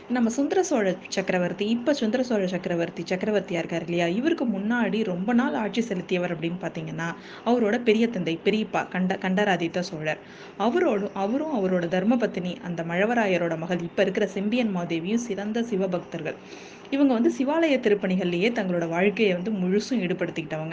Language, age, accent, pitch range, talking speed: Tamil, 20-39, native, 185-235 Hz, 135 wpm